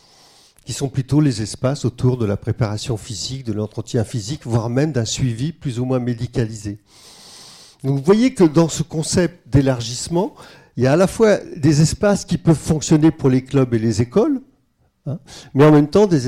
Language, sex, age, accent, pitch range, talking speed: French, male, 50-69, French, 125-160 Hz, 190 wpm